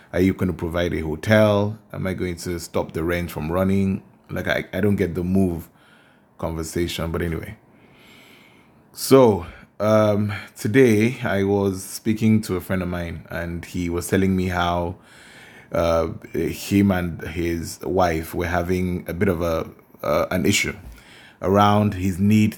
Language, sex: English, male